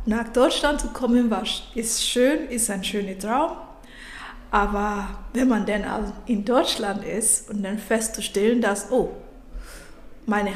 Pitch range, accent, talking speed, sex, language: 215-255 Hz, German, 135 wpm, female, German